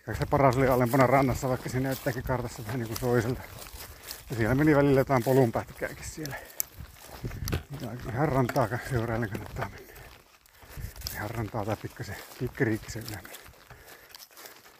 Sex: male